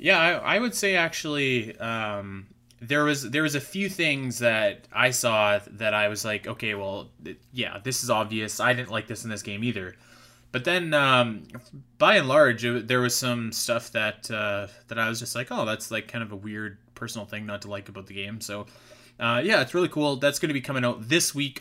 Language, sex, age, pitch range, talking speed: English, male, 20-39, 105-125 Hz, 230 wpm